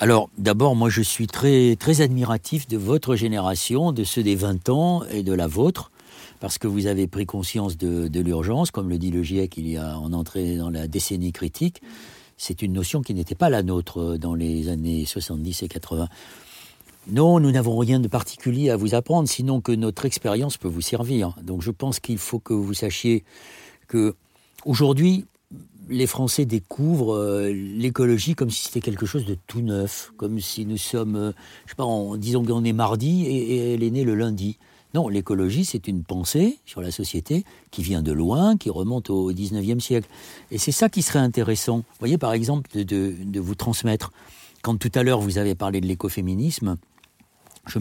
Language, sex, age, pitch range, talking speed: French, male, 60-79, 95-125 Hz, 195 wpm